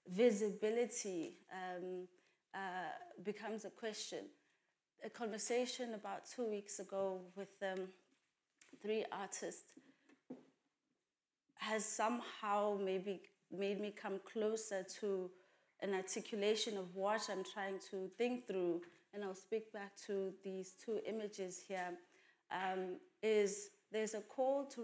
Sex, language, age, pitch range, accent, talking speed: female, English, 30-49, 195-220 Hz, South African, 115 wpm